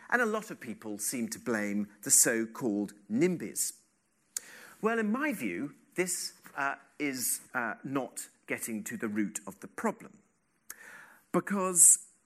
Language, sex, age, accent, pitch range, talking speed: English, male, 40-59, British, 140-215 Hz, 135 wpm